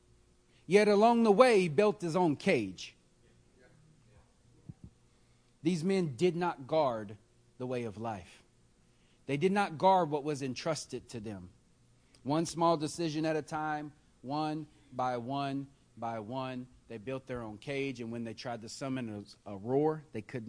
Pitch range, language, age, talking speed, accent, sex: 120-170 Hz, English, 40-59, 160 wpm, American, male